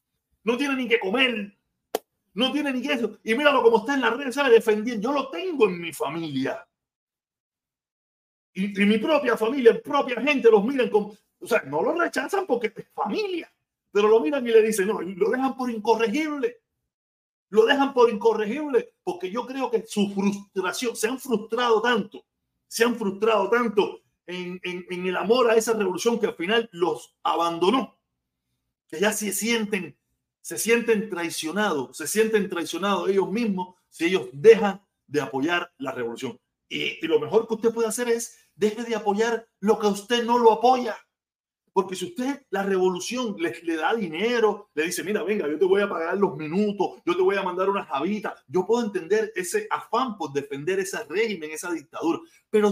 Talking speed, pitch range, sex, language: 180 wpm, 190-265 Hz, male, Spanish